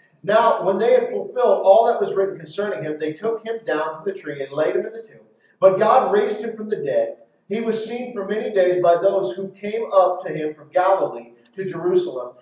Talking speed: 230 wpm